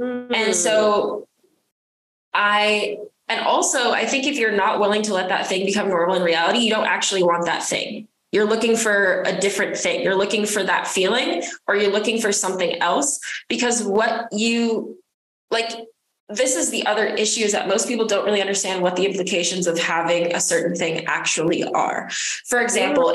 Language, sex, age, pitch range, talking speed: English, female, 20-39, 185-235 Hz, 180 wpm